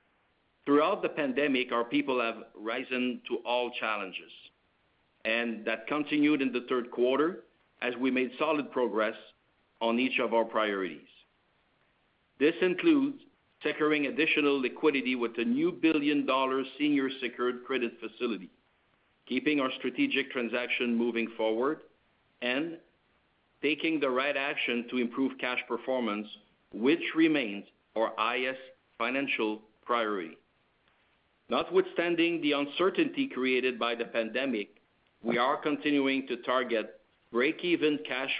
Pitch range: 115-150 Hz